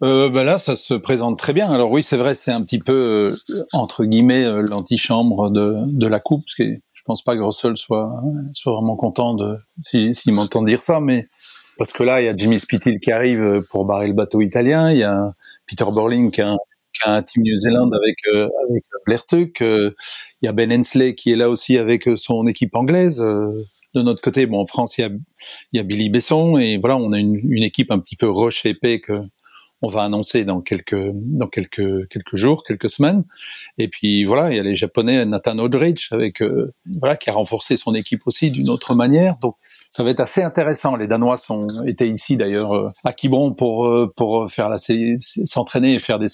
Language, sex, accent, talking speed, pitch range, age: French, male, French, 225 wpm, 110-130 Hz, 40-59